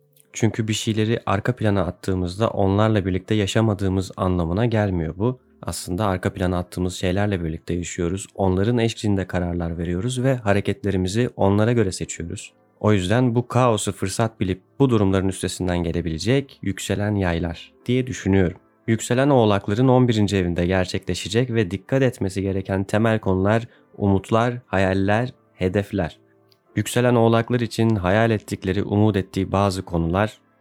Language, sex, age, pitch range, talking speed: Turkish, male, 30-49, 90-110 Hz, 125 wpm